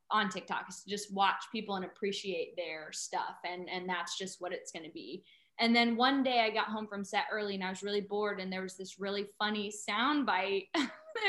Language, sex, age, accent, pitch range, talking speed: English, female, 20-39, American, 195-275 Hz, 230 wpm